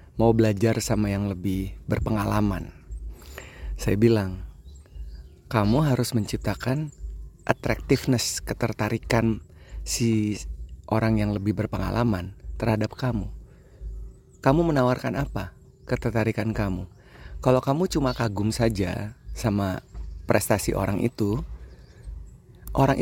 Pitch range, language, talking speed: 100-125 Hz, Indonesian, 90 wpm